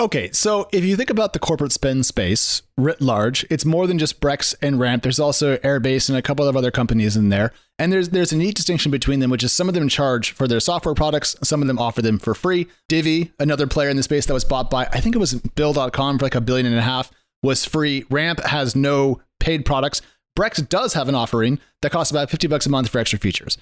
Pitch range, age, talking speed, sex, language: 130-160 Hz, 30-49, 250 wpm, male, English